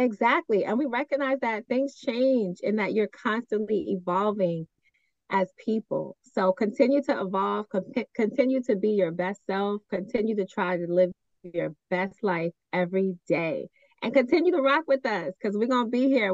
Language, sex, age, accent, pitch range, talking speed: English, female, 30-49, American, 185-245 Hz, 165 wpm